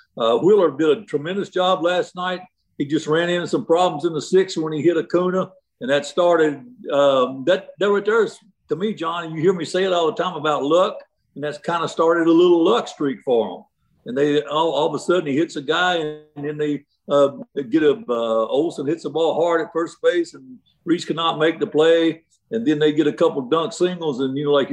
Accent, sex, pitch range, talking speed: American, male, 150-185 Hz, 235 wpm